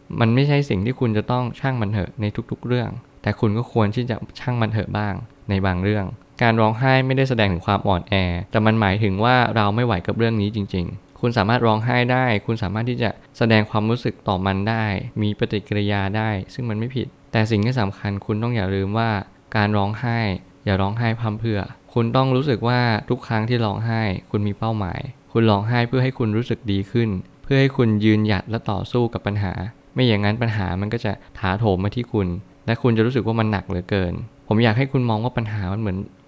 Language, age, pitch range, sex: Thai, 20-39, 100-120 Hz, male